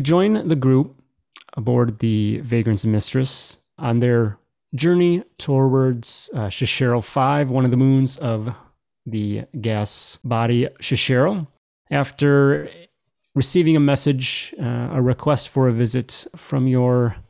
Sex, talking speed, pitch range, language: male, 120 wpm, 115-140 Hz, English